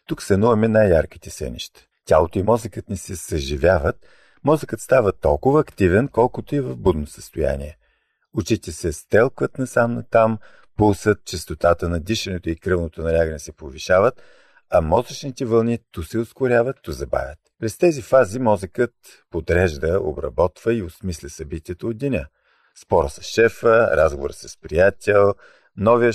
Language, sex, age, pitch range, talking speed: Bulgarian, male, 50-69, 85-120 Hz, 135 wpm